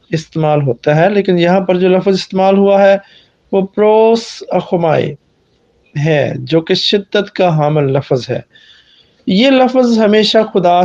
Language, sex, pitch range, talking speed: Hindi, male, 155-200 Hz, 145 wpm